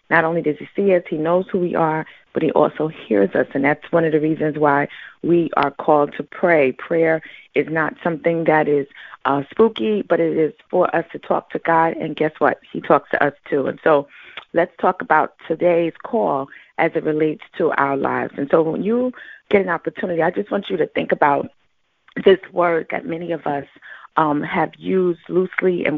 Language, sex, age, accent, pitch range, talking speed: English, female, 30-49, American, 150-175 Hz, 210 wpm